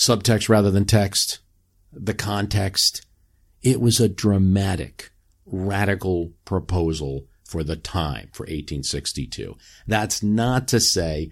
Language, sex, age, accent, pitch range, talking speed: English, male, 50-69, American, 85-105 Hz, 110 wpm